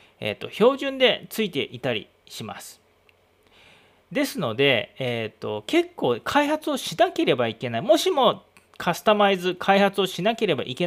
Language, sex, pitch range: Japanese, male, 125-200 Hz